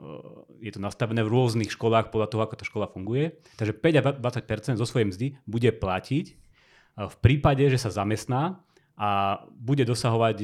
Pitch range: 105-130 Hz